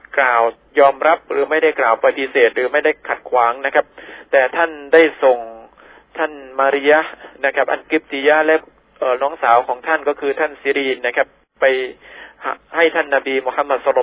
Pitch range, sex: 130-155 Hz, male